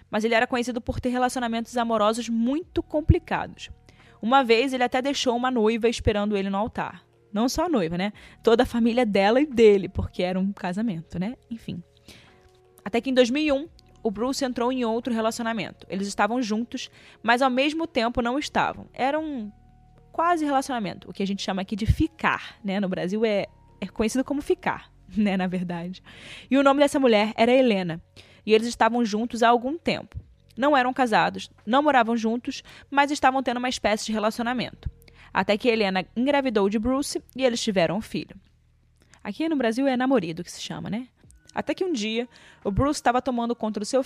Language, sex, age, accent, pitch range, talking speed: Portuguese, female, 20-39, Brazilian, 205-260 Hz, 190 wpm